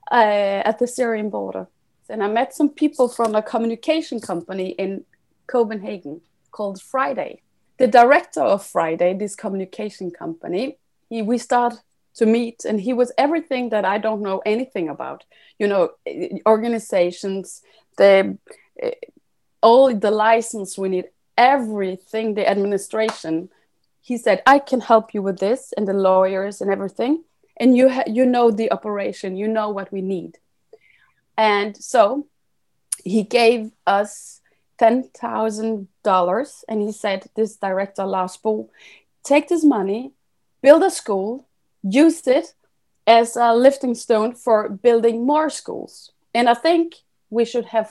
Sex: female